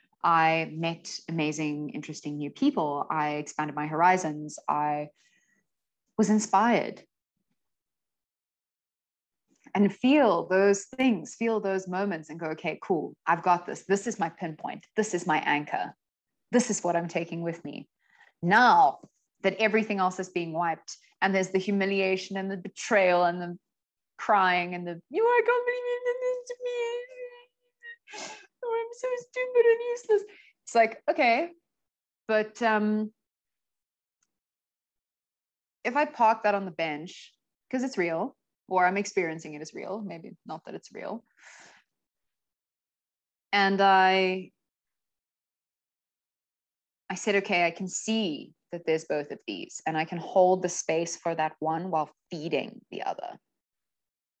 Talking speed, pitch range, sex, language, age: 140 wpm, 165-230 Hz, female, English, 20-39